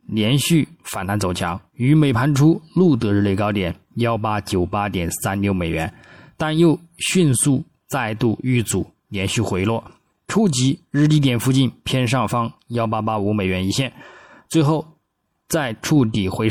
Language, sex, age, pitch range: Chinese, male, 20-39, 100-135 Hz